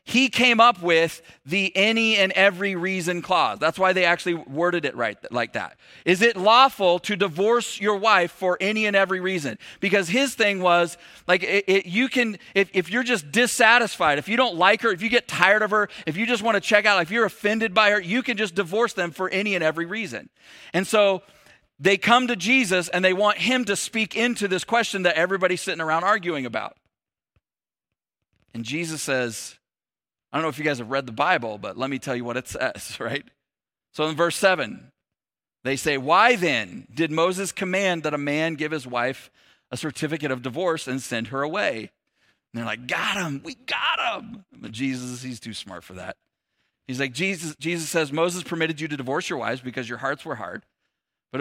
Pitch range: 150-205 Hz